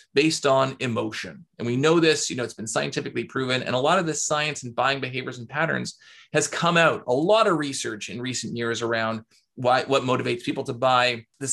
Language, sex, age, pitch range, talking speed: English, male, 30-49, 115-145 Hz, 220 wpm